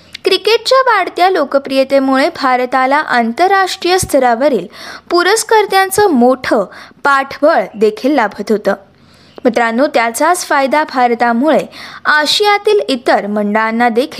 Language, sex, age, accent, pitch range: Marathi, female, 20-39, native, 235-335 Hz